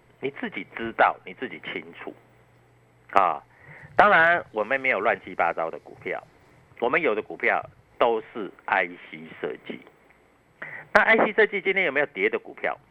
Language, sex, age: Chinese, male, 50-69